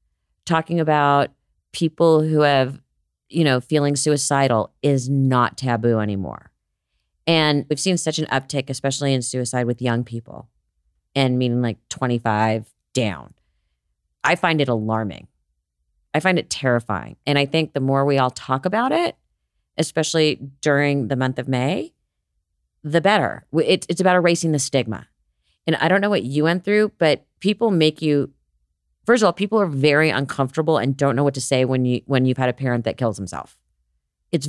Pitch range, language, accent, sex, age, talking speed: 110-160 Hz, English, American, female, 30-49, 170 wpm